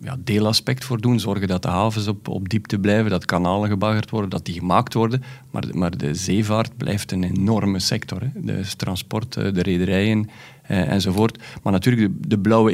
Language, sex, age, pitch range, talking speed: Dutch, male, 40-59, 100-125 Hz, 185 wpm